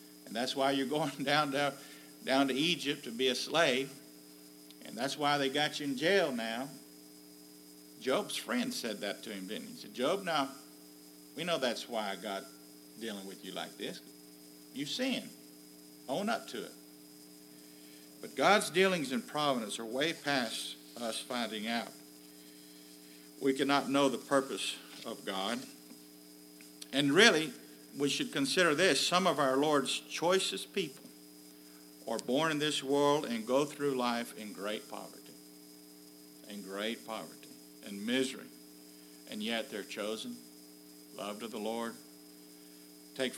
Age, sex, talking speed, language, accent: 50-69, male, 150 wpm, English, American